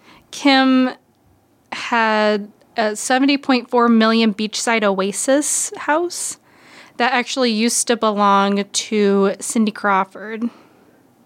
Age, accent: 20-39, American